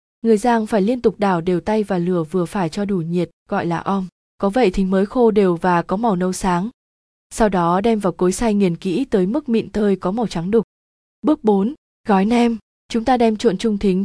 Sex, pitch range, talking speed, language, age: female, 185-225 Hz, 235 wpm, Vietnamese, 20-39